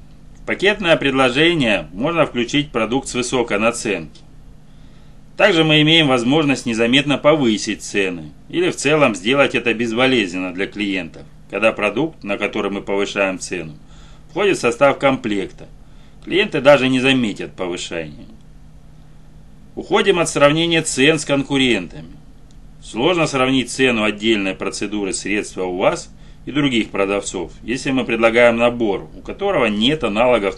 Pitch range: 100-145 Hz